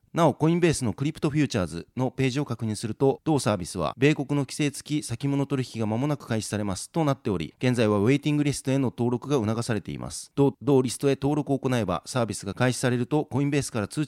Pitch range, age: 115-145 Hz, 40-59